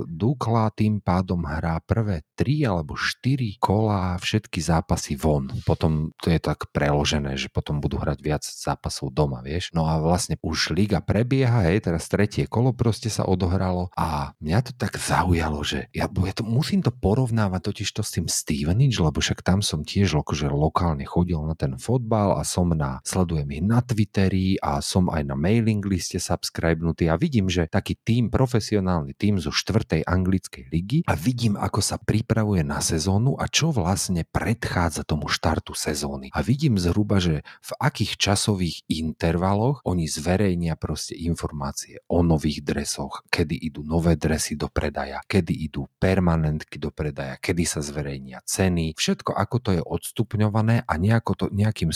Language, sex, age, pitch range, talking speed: Slovak, male, 40-59, 80-105 Hz, 165 wpm